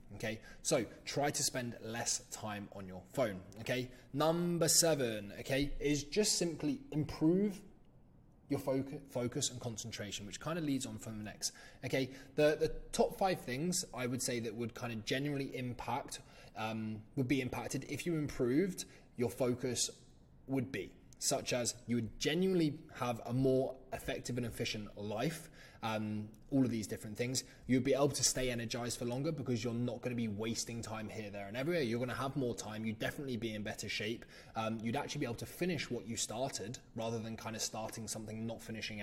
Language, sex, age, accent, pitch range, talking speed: English, male, 20-39, British, 110-135 Hz, 190 wpm